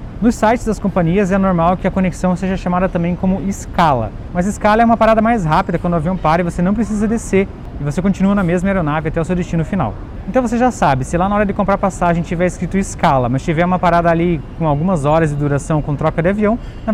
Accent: Brazilian